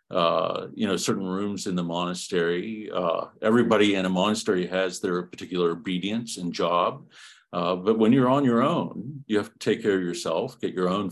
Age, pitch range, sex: 50-69, 90-110 Hz, male